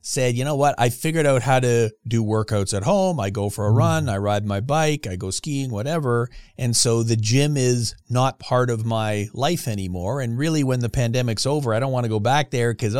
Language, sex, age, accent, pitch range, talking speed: English, male, 40-59, American, 110-135 Hz, 235 wpm